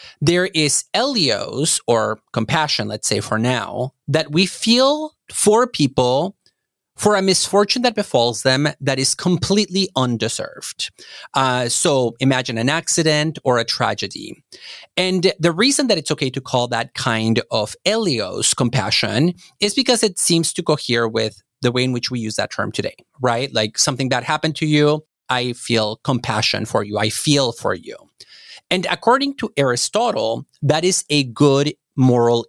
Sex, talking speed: male, 160 wpm